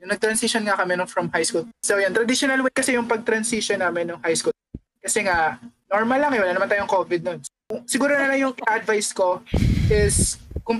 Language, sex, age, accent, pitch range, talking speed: Filipino, male, 20-39, native, 180-230 Hz, 210 wpm